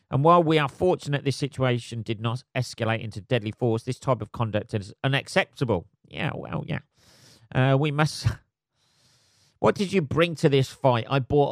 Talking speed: 175 wpm